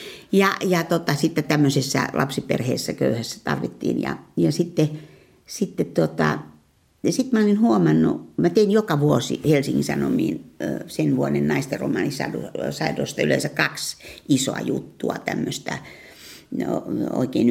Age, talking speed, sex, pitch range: 60-79, 115 wpm, female, 130-190 Hz